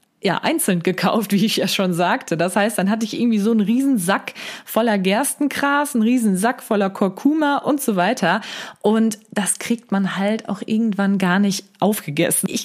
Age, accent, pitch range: 20-39, German, 185-225 Hz